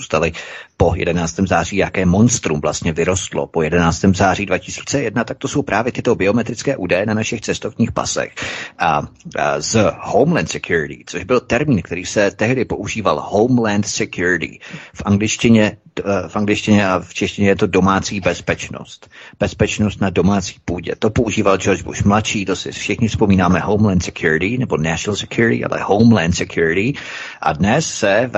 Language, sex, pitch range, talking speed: Czech, male, 95-110 Hz, 150 wpm